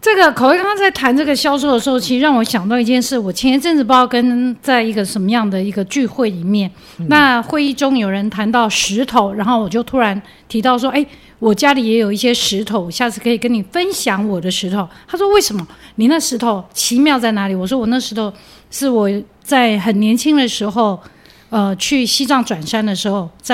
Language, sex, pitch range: English, female, 210-265 Hz